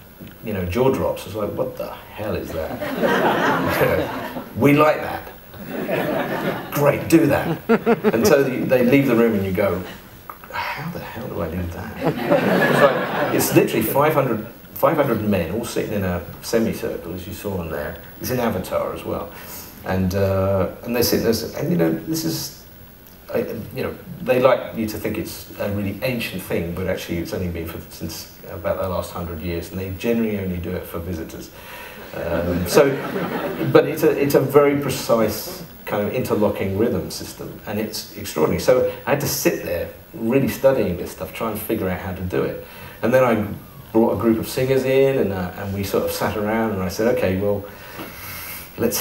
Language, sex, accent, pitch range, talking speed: English, male, British, 95-120 Hz, 195 wpm